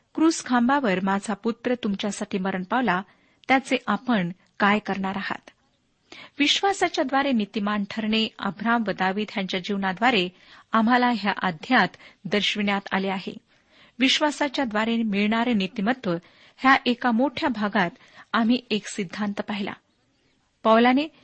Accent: native